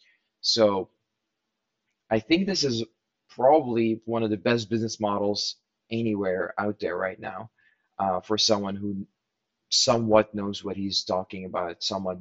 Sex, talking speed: male, 140 wpm